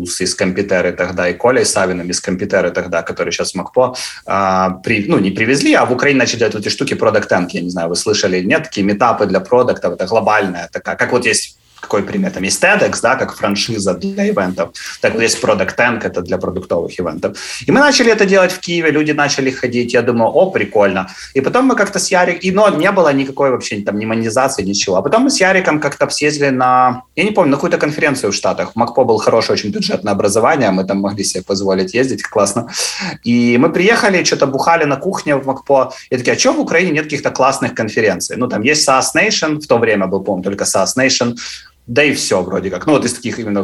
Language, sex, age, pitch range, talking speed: Ukrainian, male, 30-49, 100-145 Hz, 225 wpm